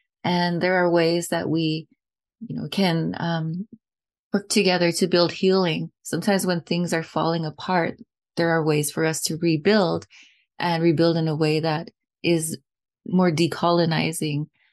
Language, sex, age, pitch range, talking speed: English, female, 20-39, 155-180 Hz, 150 wpm